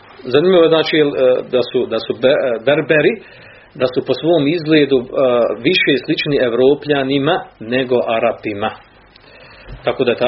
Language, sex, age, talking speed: Croatian, male, 40-59, 130 wpm